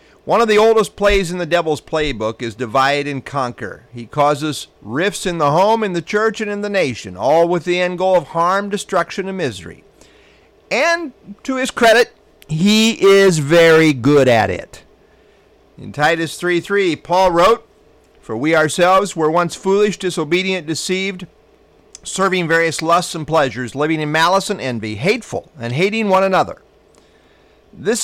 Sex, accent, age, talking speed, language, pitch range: male, American, 50-69, 160 wpm, English, 140-195 Hz